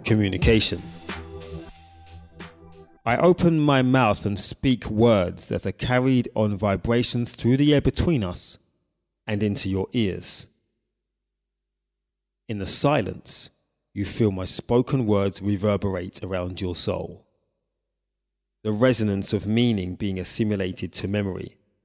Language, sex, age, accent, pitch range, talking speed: English, male, 30-49, British, 95-120 Hz, 115 wpm